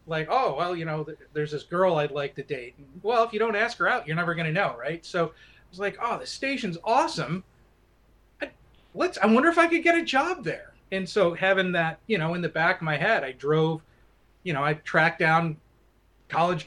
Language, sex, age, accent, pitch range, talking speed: English, male, 30-49, American, 150-180 Hz, 240 wpm